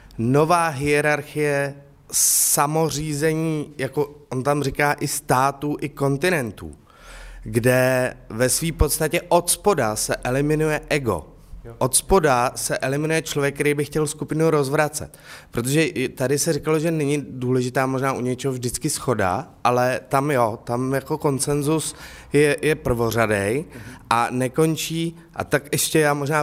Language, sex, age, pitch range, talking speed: Czech, male, 30-49, 125-155 Hz, 130 wpm